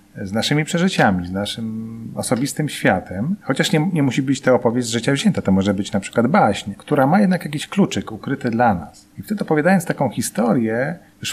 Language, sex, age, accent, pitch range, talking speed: Polish, male, 40-59, native, 105-140 Hz, 195 wpm